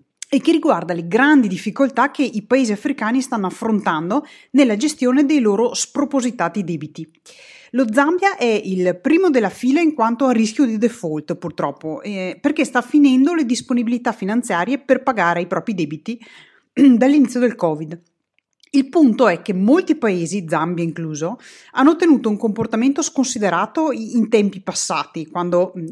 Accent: native